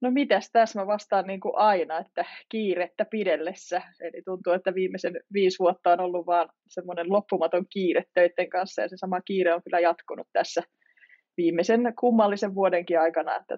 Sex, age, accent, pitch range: female, 20-39, Finnish, 175-205 Hz